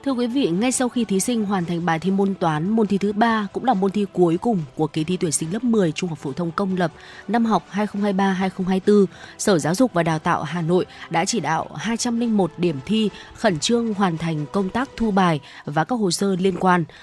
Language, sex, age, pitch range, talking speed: Vietnamese, female, 20-39, 170-215 Hz, 240 wpm